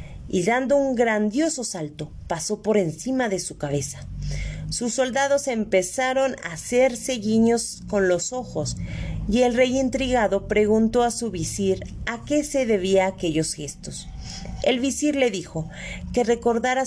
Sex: female